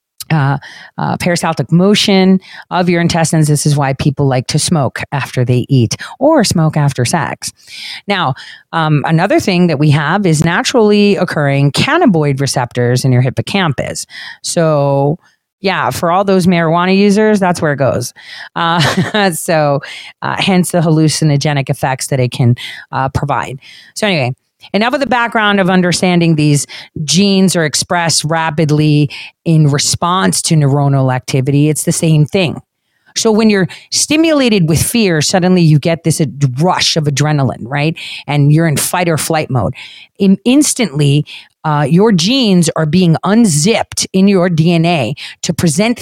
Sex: female